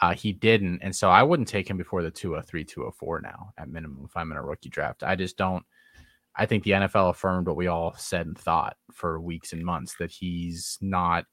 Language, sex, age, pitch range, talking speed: English, male, 20-39, 85-100 Hz, 230 wpm